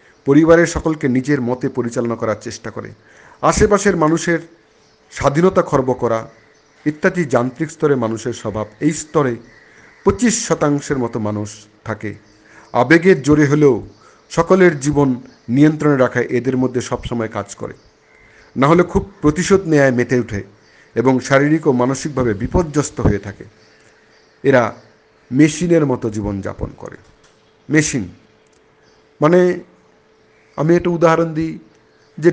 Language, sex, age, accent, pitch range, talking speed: Bengali, male, 50-69, native, 115-165 Hz, 120 wpm